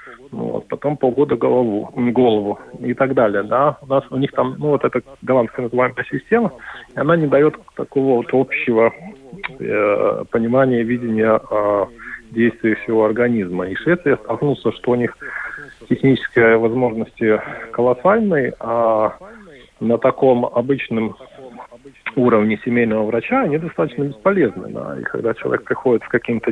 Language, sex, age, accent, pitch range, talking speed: Russian, male, 40-59, native, 110-135 Hz, 135 wpm